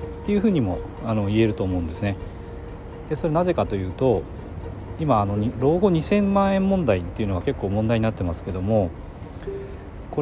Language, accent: Japanese, native